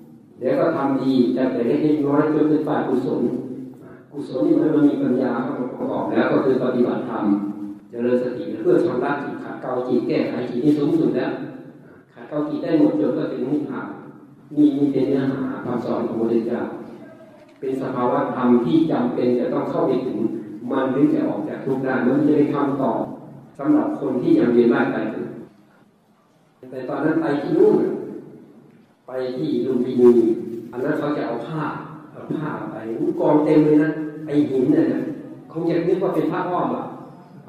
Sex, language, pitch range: male, Thai, 130-170 Hz